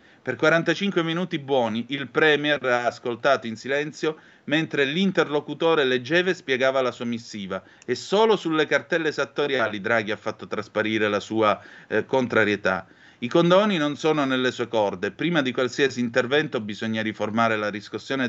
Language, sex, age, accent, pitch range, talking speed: Italian, male, 30-49, native, 110-155 Hz, 150 wpm